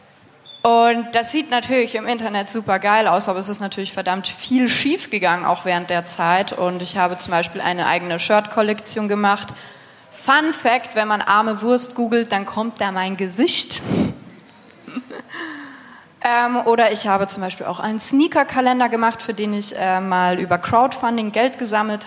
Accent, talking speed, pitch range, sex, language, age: German, 165 wpm, 185-235 Hz, female, German, 20-39